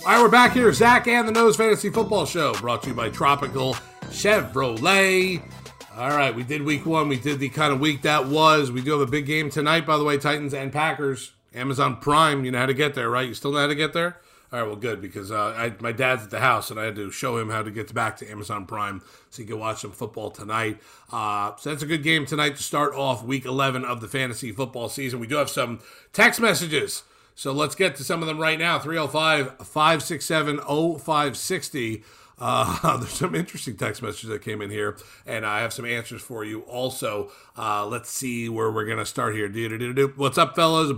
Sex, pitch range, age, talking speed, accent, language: male, 115-155 Hz, 40-59, 225 wpm, American, English